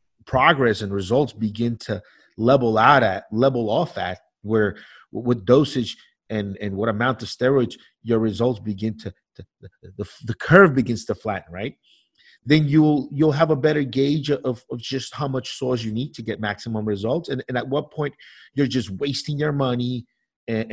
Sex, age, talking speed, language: male, 30-49, 180 wpm, English